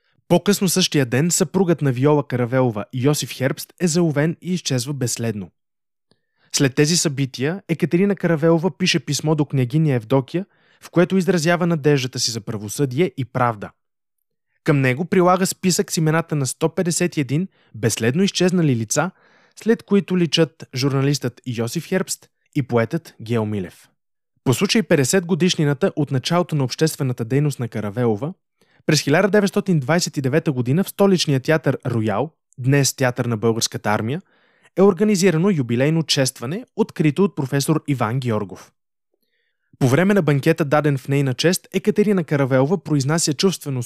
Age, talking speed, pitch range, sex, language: 20-39, 135 wpm, 130-180 Hz, male, Bulgarian